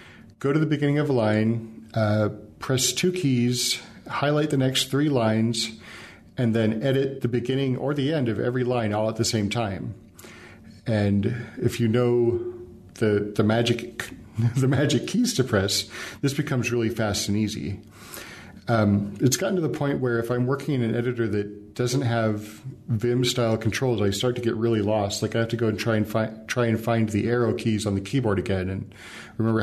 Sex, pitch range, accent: male, 105-125 Hz, American